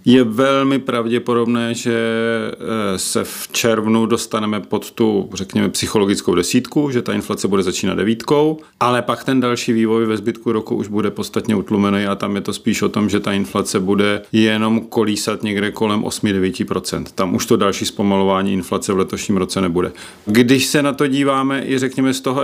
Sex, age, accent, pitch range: male, 40-59, native, 105-125 Hz